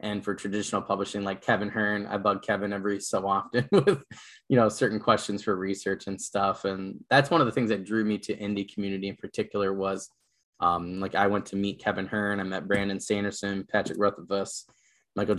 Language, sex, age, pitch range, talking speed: English, male, 10-29, 95-105 Hz, 205 wpm